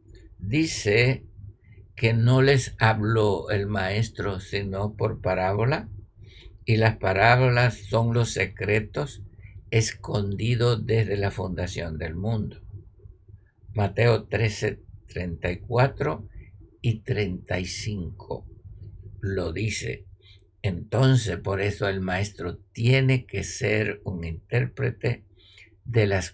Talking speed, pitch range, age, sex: 95 wpm, 95-115 Hz, 60-79, male